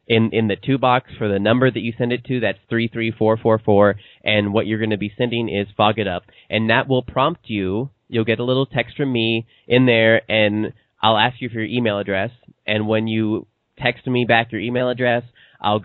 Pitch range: 105-120 Hz